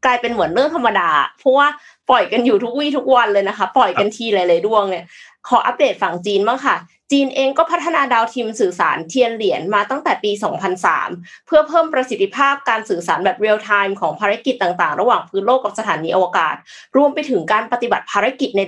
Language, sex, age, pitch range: Thai, female, 20-39, 195-275 Hz